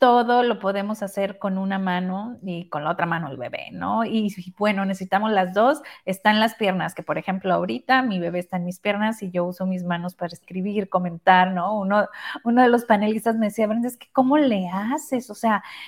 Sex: female